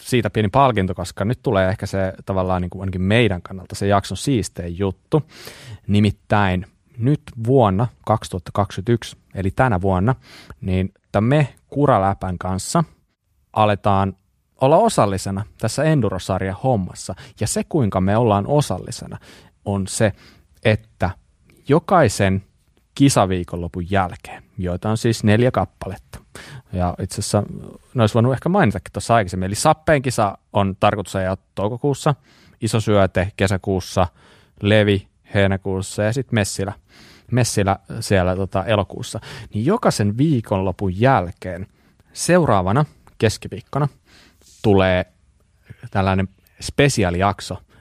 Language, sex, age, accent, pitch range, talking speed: Finnish, male, 30-49, native, 95-120 Hz, 110 wpm